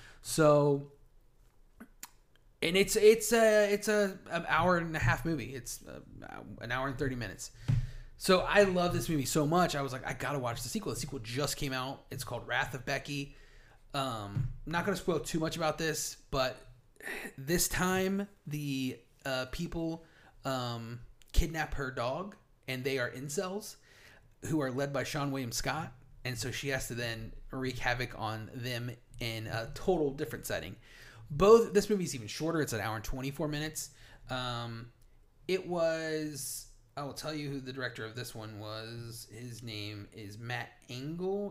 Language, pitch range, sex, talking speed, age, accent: English, 120-155 Hz, male, 175 wpm, 30-49, American